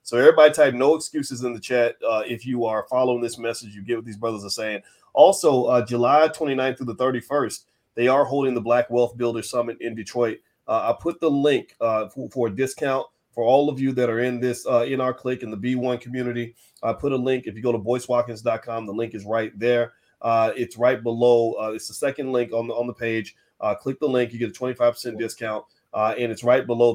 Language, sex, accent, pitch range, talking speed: English, male, American, 115-130 Hz, 240 wpm